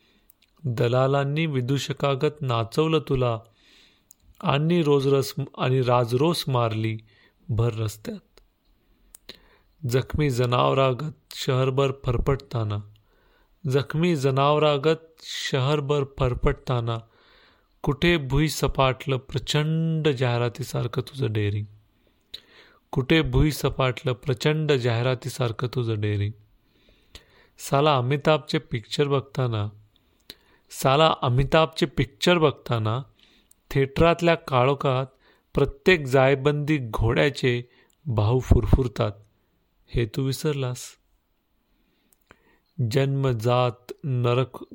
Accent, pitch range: native, 120-145 Hz